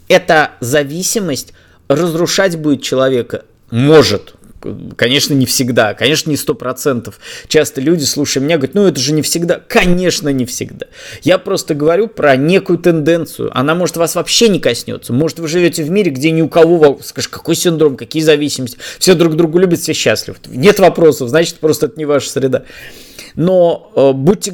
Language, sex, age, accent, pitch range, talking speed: Russian, male, 20-39, native, 140-175 Hz, 170 wpm